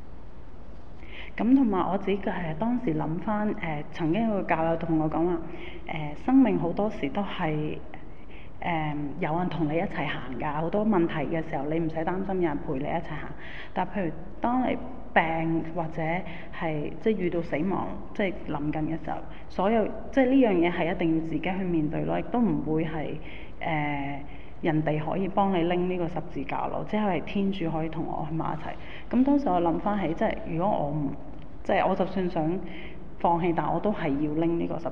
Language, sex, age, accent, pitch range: English, female, 30-49, Chinese, 155-190 Hz